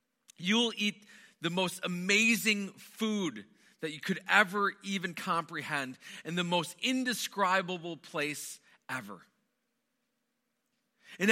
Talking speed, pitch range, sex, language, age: 100 wpm, 160-220 Hz, male, English, 40-59